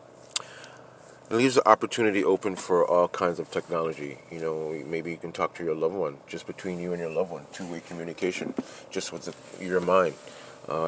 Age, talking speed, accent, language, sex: 30-49, 190 wpm, American, English, male